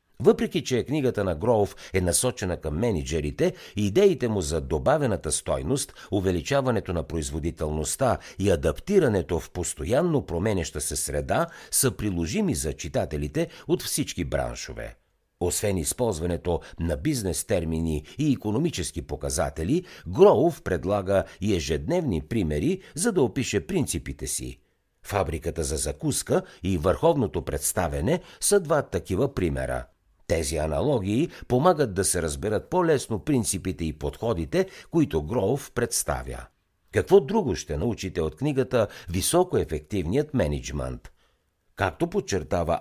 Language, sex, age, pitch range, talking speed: Bulgarian, male, 60-79, 80-125 Hz, 115 wpm